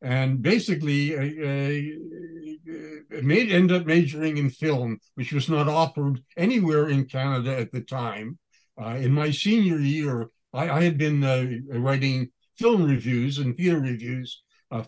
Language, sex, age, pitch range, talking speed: English, male, 60-79, 125-160 Hz, 150 wpm